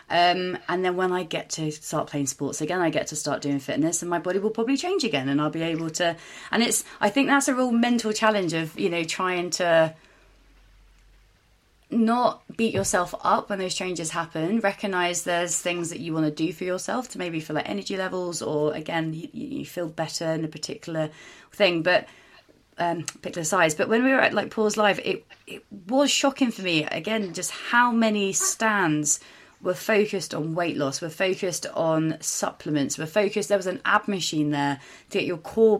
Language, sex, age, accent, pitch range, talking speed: English, female, 30-49, British, 160-215 Hz, 205 wpm